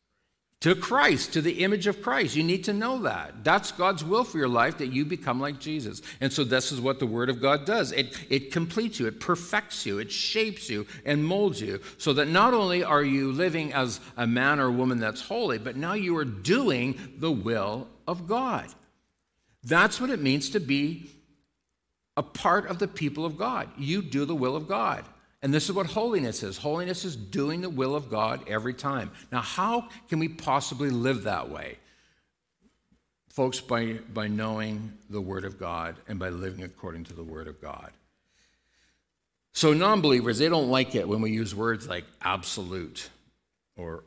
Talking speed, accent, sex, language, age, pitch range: 190 wpm, American, male, English, 50-69, 105-170 Hz